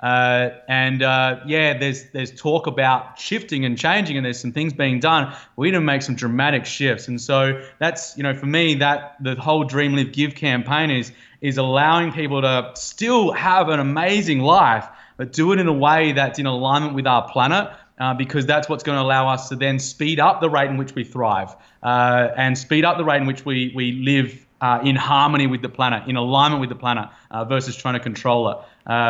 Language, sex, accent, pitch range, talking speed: English, male, Australian, 125-145 Hz, 220 wpm